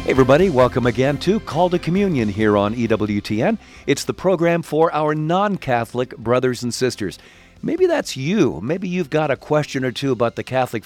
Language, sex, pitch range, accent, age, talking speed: English, male, 115-150 Hz, American, 50-69, 180 wpm